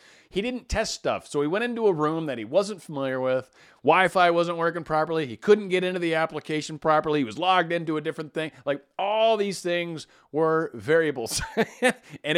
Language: English